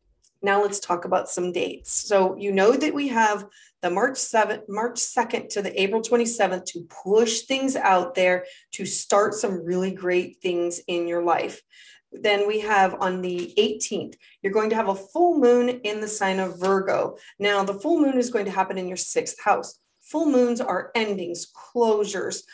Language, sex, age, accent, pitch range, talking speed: English, female, 30-49, American, 190-240 Hz, 185 wpm